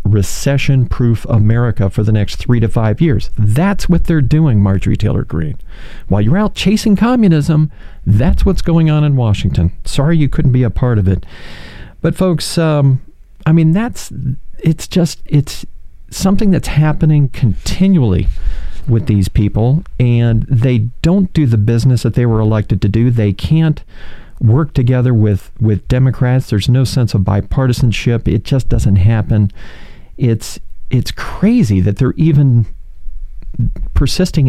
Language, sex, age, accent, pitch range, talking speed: English, male, 40-59, American, 105-150 Hz, 150 wpm